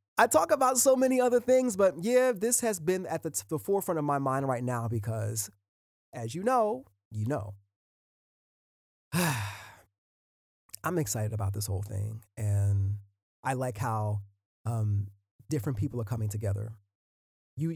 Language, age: English, 30-49